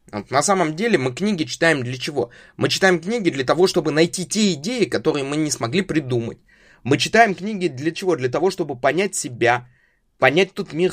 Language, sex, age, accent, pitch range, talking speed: Russian, male, 20-39, native, 130-185 Hz, 190 wpm